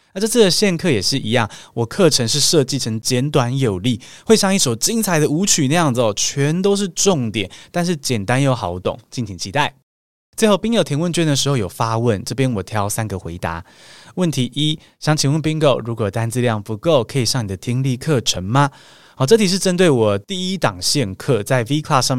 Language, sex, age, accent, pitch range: Chinese, male, 20-39, native, 110-155 Hz